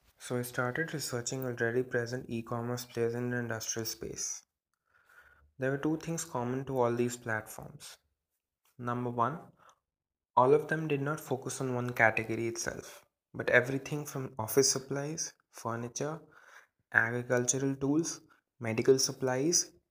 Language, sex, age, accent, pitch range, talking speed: English, male, 20-39, Indian, 120-140 Hz, 130 wpm